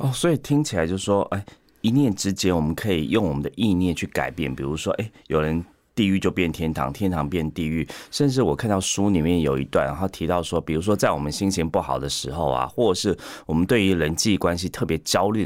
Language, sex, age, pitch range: Chinese, male, 30-49, 75-105 Hz